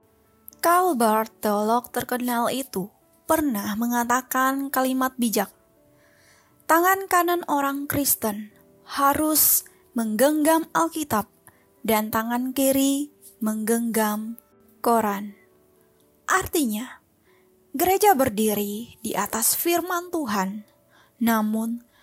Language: Indonesian